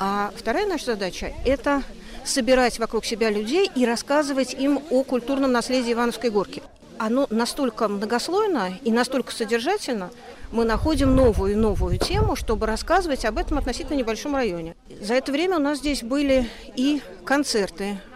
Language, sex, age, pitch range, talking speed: Russian, female, 40-59, 215-260 Hz, 150 wpm